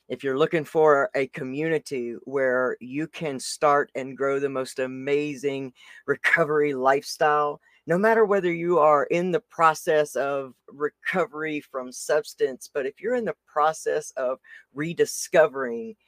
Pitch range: 130-160 Hz